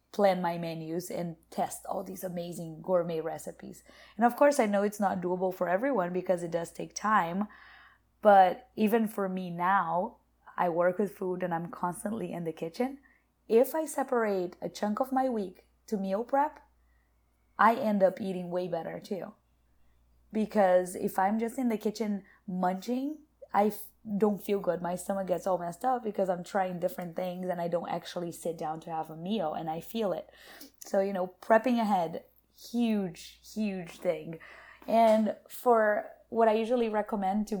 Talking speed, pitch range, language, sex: 175 wpm, 180-230 Hz, English, female